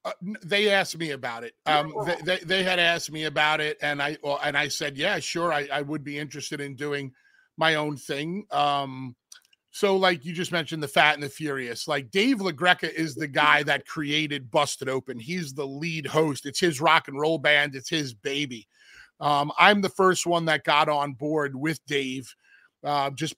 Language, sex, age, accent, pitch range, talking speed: English, male, 40-59, American, 140-175 Hz, 205 wpm